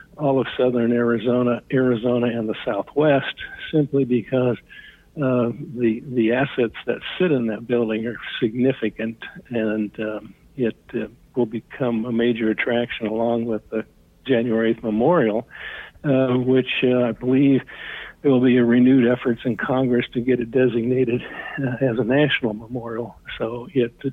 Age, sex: 60-79, male